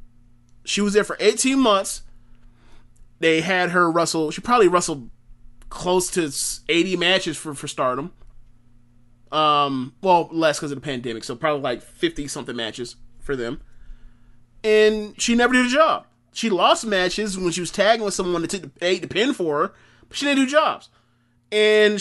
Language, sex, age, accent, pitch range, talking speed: English, male, 20-39, American, 125-185 Hz, 170 wpm